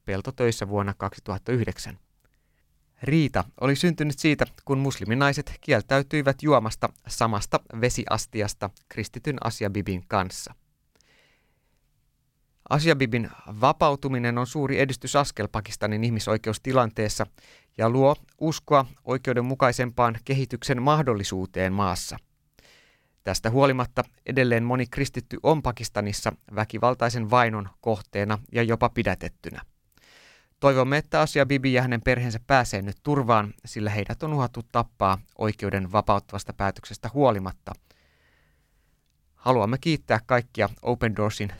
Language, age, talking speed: Finnish, 30-49, 95 wpm